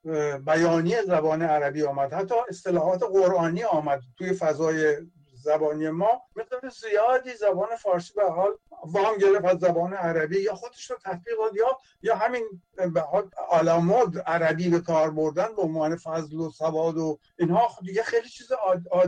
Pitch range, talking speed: 155-190 Hz, 145 wpm